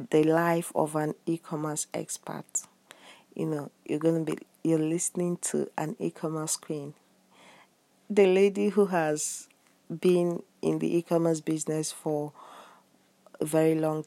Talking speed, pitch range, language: 130 wpm, 150-165 Hz, English